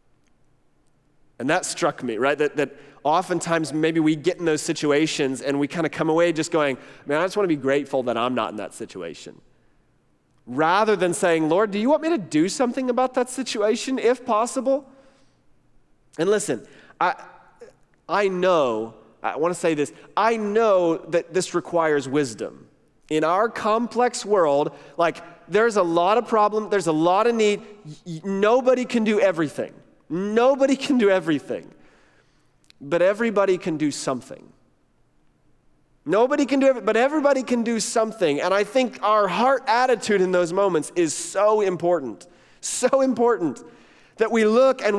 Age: 30-49